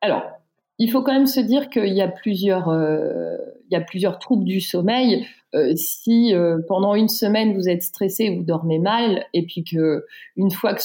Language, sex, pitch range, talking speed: French, female, 165-210 Hz, 200 wpm